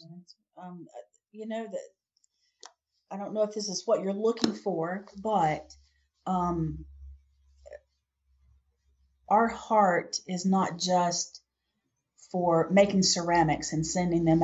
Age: 40-59